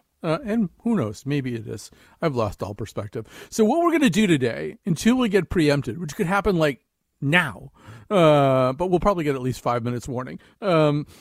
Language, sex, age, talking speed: English, male, 50-69, 205 wpm